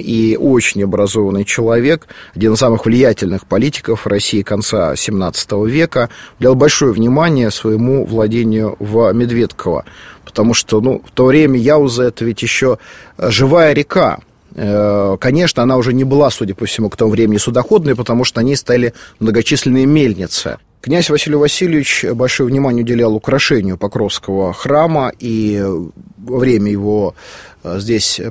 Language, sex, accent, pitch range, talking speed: Russian, male, native, 110-135 Hz, 140 wpm